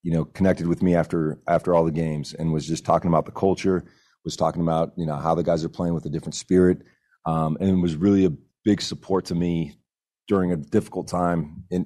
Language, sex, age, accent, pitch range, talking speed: English, male, 30-49, American, 80-90 Hz, 235 wpm